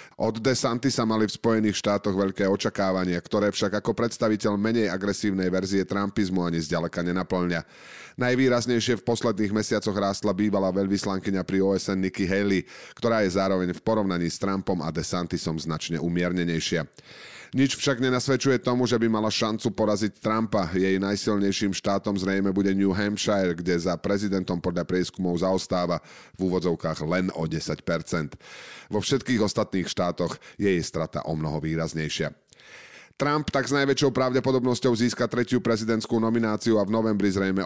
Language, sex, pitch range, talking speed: Slovak, male, 90-110 Hz, 150 wpm